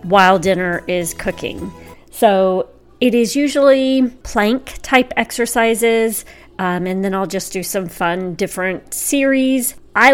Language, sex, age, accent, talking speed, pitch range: English, female, 40-59, American, 130 wpm, 180-225 Hz